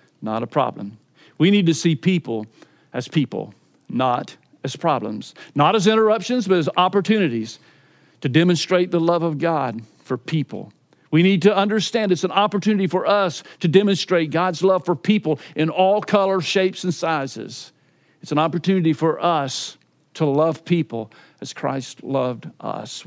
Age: 50-69